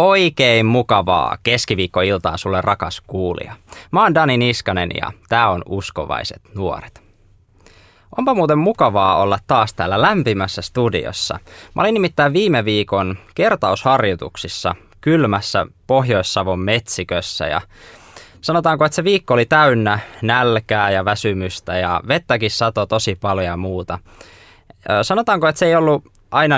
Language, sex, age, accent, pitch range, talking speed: Finnish, male, 20-39, native, 95-145 Hz, 125 wpm